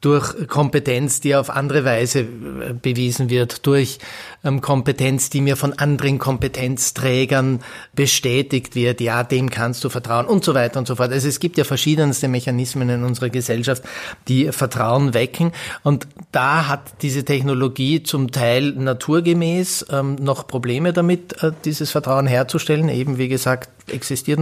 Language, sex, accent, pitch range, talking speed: German, male, Austrian, 125-145 Hz, 145 wpm